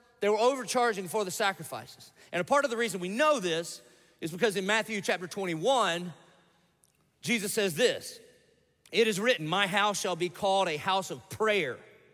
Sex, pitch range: male, 170-225 Hz